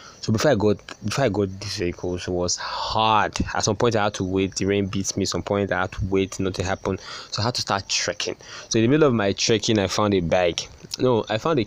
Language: English